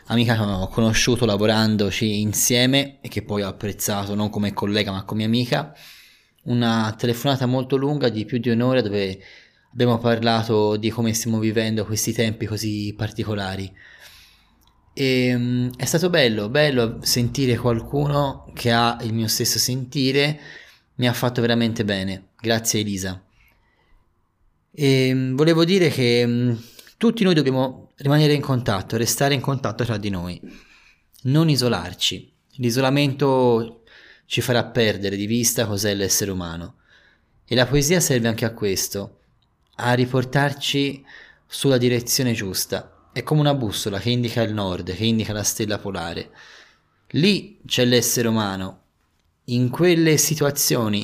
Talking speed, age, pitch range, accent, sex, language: 135 wpm, 20-39, 105-130 Hz, native, male, Italian